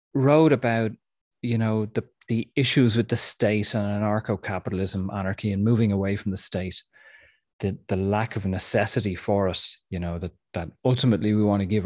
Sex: male